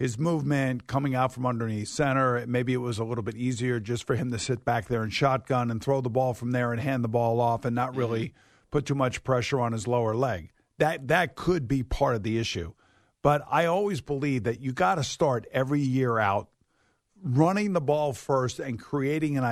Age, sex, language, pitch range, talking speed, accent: 50-69, male, English, 120-145 Hz, 220 wpm, American